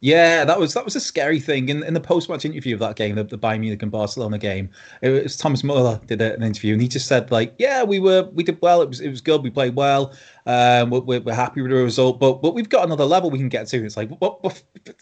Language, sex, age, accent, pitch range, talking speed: English, male, 20-39, British, 115-160 Hz, 285 wpm